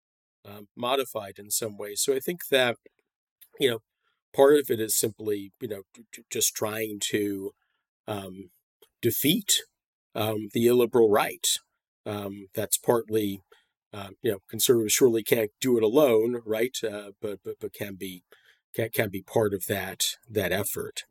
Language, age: English, 40-59